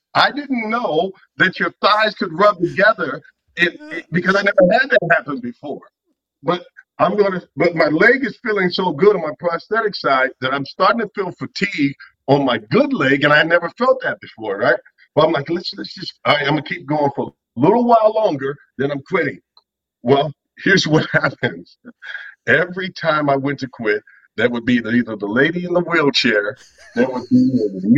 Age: 50-69